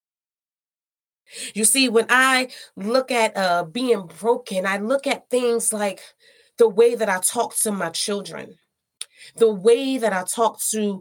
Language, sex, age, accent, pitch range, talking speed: English, female, 30-49, American, 205-255 Hz, 155 wpm